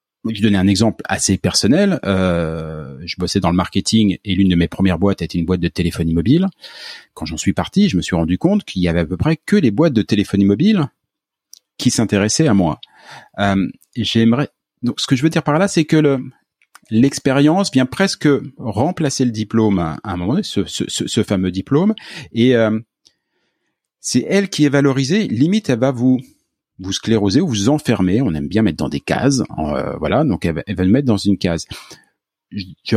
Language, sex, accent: French, male, French